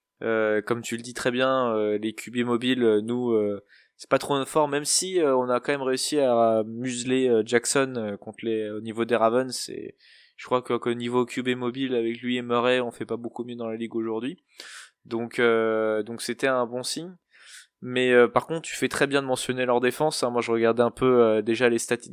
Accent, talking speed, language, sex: French, 235 wpm, French, male